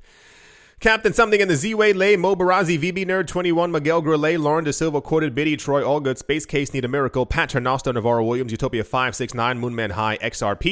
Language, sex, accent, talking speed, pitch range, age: English, male, American, 205 wpm, 145-195 Hz, 30-49